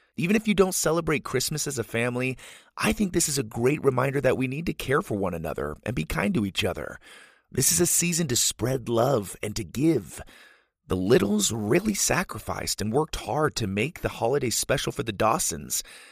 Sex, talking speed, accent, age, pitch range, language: male, 205 wpm, American, 30-49, 105-155 Hz, English